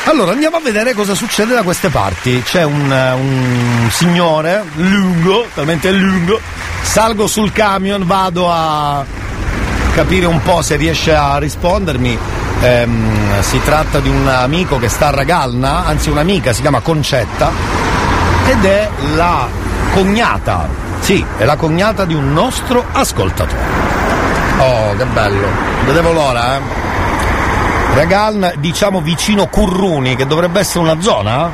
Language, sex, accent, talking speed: Italian, male, native, 135 wpm